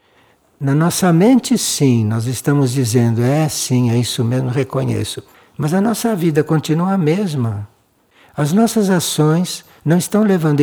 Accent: Brazilian